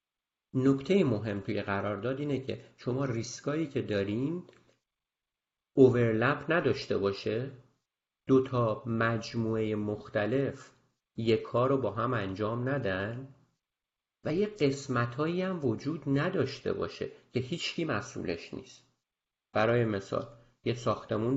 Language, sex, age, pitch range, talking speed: Persian, male, 50-69, 110-140 Hz, 110 wpm